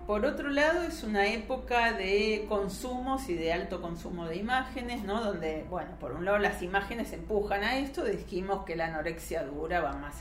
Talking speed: 190 wpm